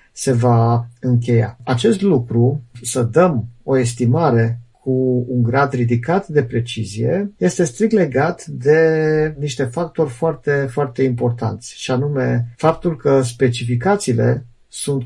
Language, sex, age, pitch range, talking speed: Romanian, male, 50-69, 120-155 Hz, 120 wpm